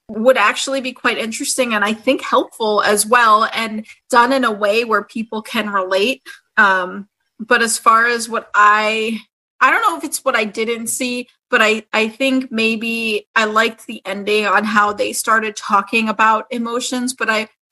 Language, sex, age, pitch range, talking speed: English, female, 30-49, 215-255 Hz, 185 wpm